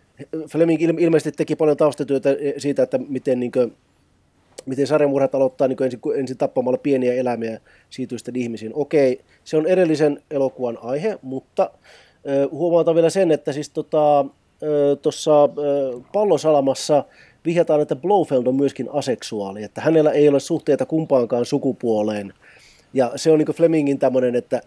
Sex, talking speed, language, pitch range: male, 140 wpm, Finnish, 130-165 Hz